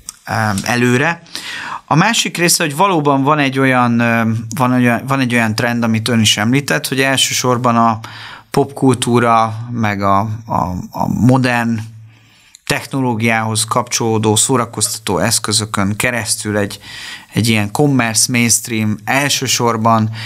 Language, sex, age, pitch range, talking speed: Hungarian, male, 30-49, 105-130 Hz, 100 wpm